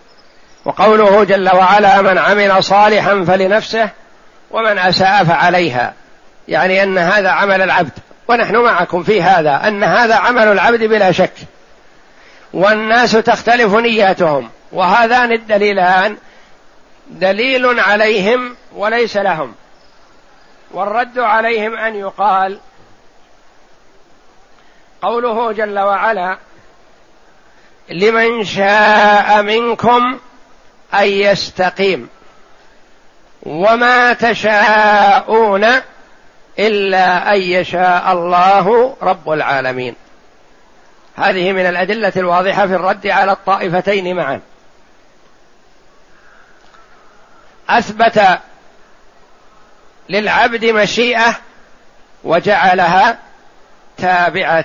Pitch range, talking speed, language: 185-225 Hz, 75 wpm, Arabic